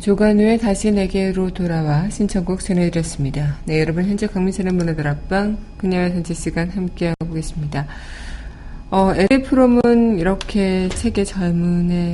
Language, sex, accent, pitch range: Korean, female, native, 160-195 Hz